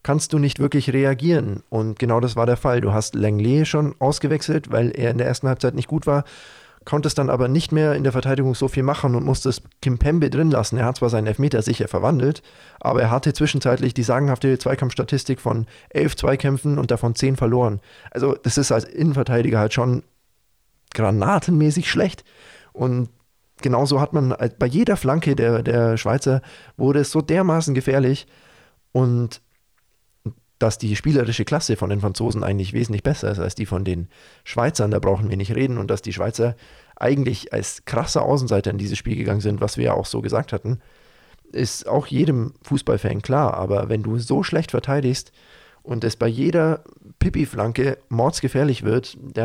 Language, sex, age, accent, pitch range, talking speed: German, male, 20-39, German, 115-140 Hz, 185 wpm